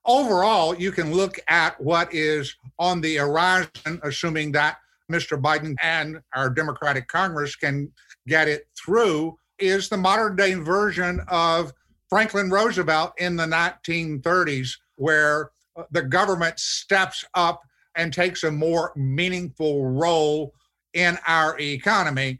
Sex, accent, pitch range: male, American, 155-180 Hz